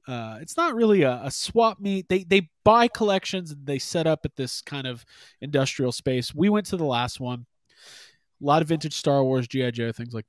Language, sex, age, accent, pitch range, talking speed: English, male, 30-49, American, 125-170 Hz, 220 wpm